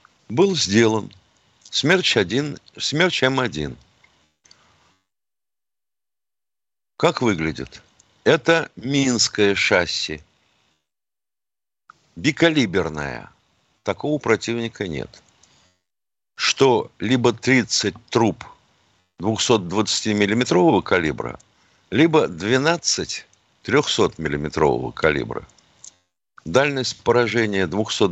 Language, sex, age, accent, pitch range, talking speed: Russian, male, 60-79, native, 90-125 Hz, 55 wpm